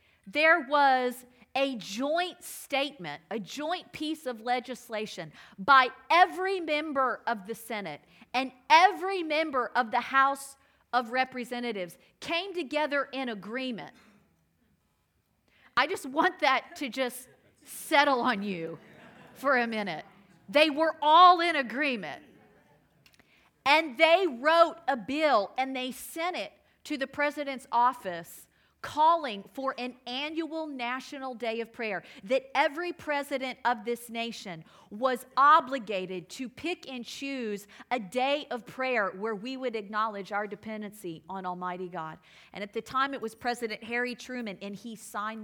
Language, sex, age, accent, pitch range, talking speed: English, female, 40-59, American, 220-285 Hz, 135 wpm